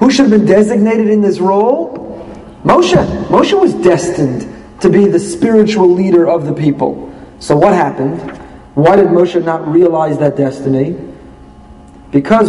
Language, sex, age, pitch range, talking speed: English, male, 40-59, 135-210 Hz, 150 wpm